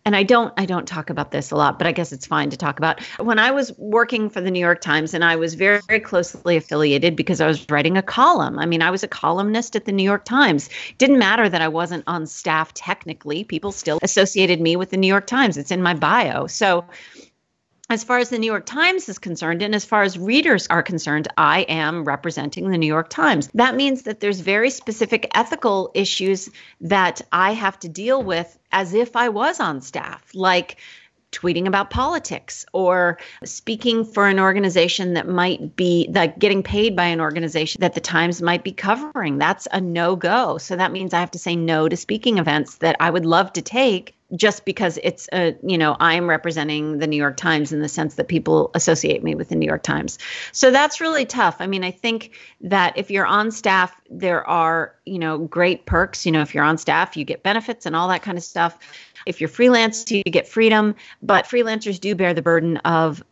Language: English